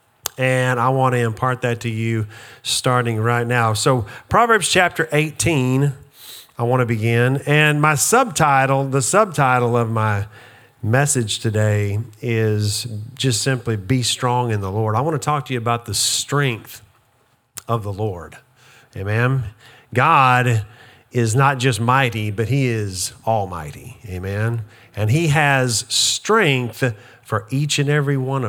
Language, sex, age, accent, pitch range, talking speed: English, male, 40-59, American, 115-150 Hz, 145 wpm